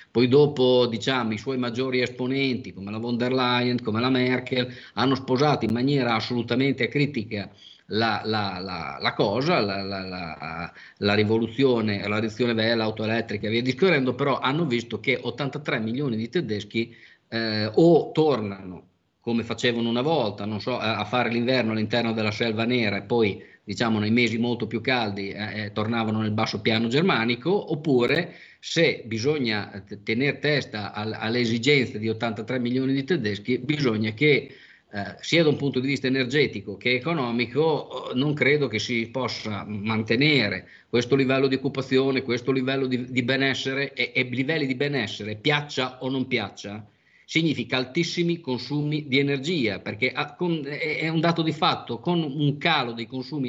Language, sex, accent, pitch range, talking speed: Italian, male, native, 110-140 Hz, 160 wpm